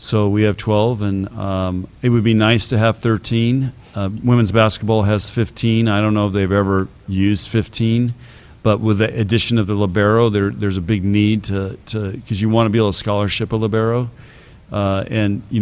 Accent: American